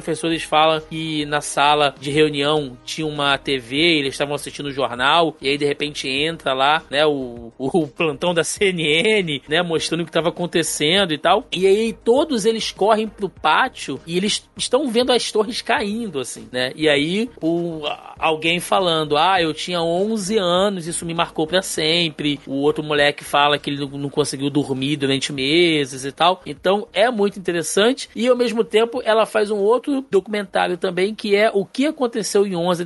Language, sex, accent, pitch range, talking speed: Portuguese, male, Brazilian, 155-215 Hz, 185 wpm